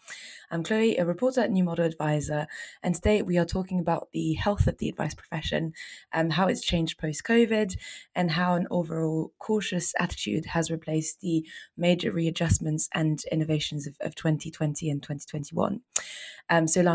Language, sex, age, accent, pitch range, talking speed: English, female, 20-39, British, 160-180 Hz, 150 wpm